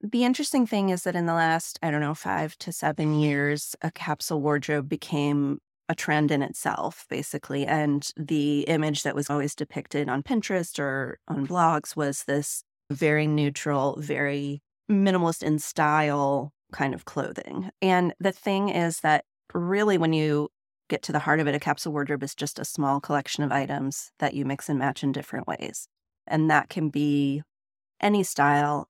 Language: English